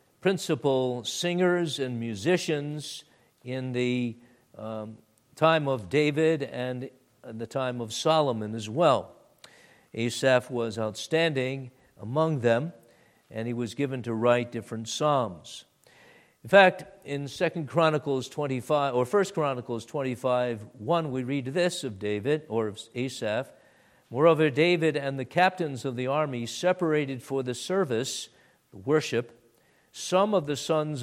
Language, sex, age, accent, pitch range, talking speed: English, male, 50-69, American, 120-155 Hz, 135 wpm